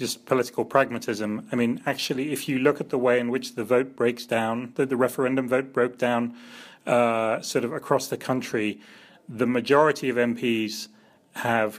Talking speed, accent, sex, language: 180 wpm, British, male, English